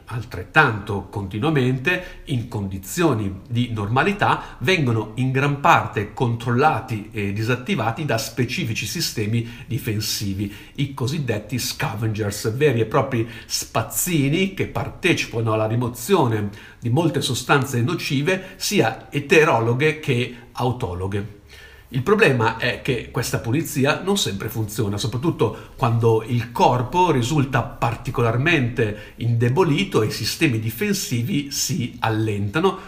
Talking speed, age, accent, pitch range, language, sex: 105 wpm, 50-69, native, 110-150 Hz, Italian, male